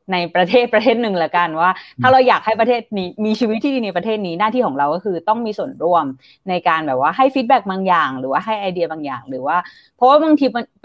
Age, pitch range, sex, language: 20-39, 170-245 Hz, female, Thai